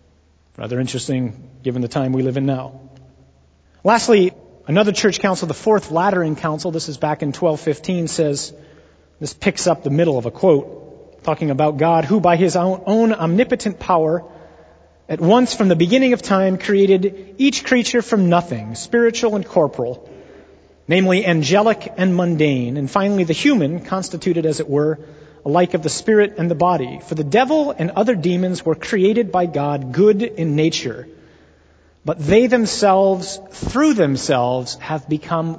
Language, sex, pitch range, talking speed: English, male, 140-195 Hz, 160 wpm